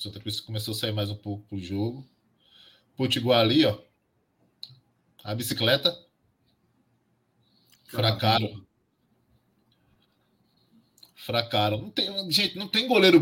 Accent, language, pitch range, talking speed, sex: Brazilian, Portuguese, 110-160 Hz, 95 wpm, male